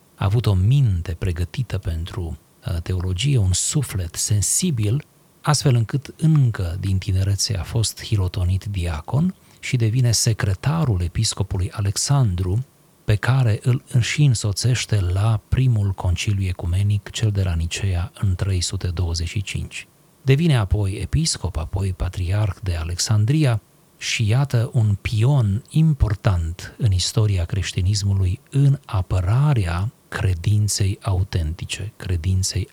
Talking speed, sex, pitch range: 105 wpm, male, 95-130 Hz